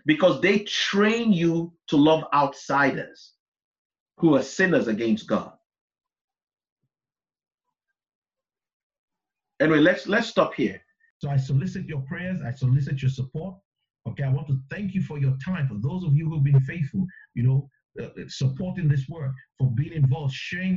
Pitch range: 135-170 Hz